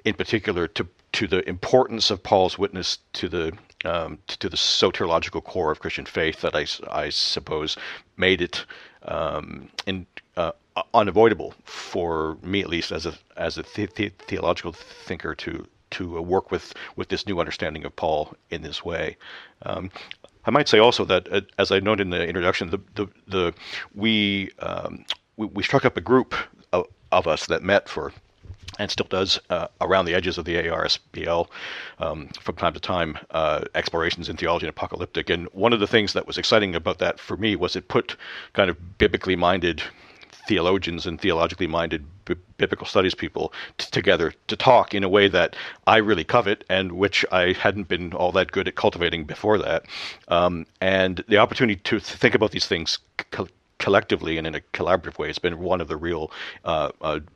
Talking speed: 185 wpm